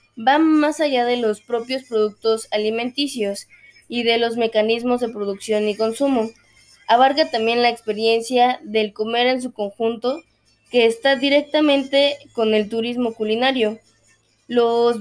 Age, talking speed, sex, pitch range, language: 20-39, 130 wpm, female, 215-255 Hz, Spanish